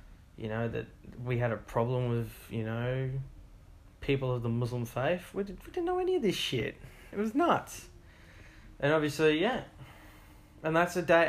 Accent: Australian